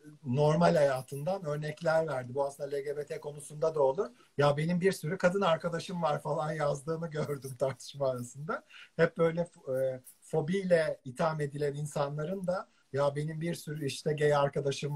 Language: Turkish